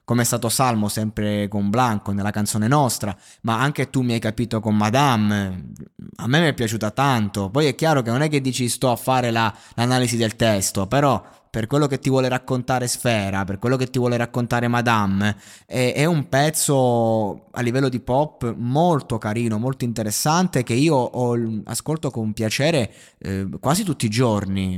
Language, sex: Italian, male